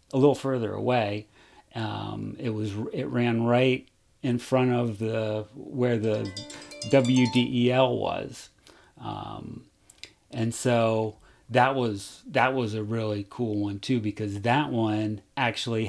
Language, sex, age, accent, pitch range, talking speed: English, male, 40-59, American, 110-130 Hz, 130 wpm